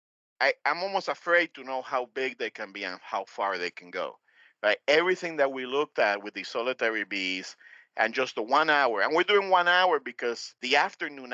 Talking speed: 215 wpm